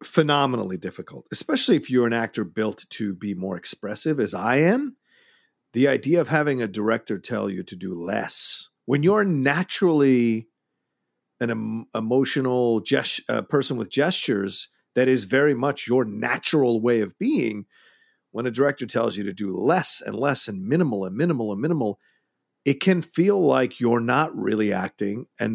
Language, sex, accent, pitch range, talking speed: English, male, American, 110-140 Hz, 160 wpm